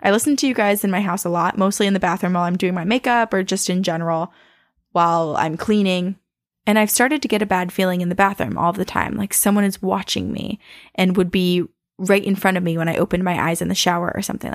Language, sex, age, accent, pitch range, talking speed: English, female, 10-29, American, 185-220 Hz, 260 wpm